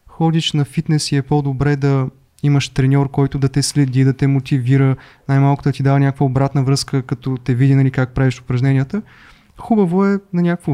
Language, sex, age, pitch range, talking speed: Bulgarian, male, 20-39, 130-155 Hz, 185 wpm